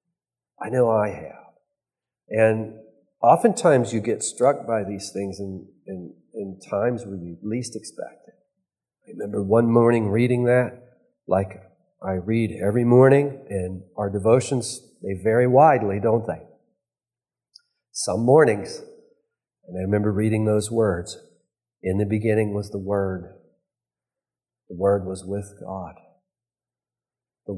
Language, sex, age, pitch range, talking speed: English, male, 40-59, 100-130 Hz, 130 wpm